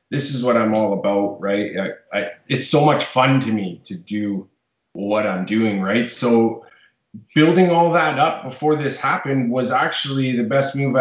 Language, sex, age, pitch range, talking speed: English, male, 20-39, 115-135 Hz, 185 wpm